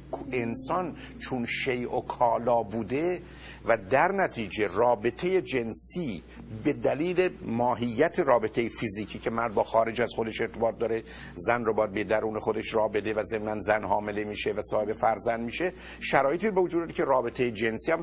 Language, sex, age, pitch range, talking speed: Persian, male, 50-69, 110-145 Hz, 160 wpm